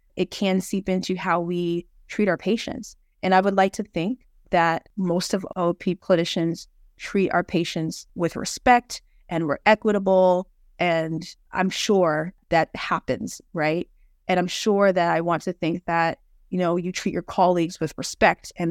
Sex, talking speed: female, 165 wpm